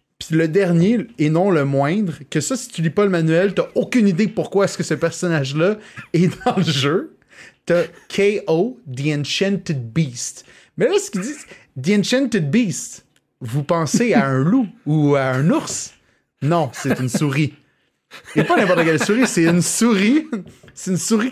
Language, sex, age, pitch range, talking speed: French, male, 30-49, 145-205 Hz, 185 wpm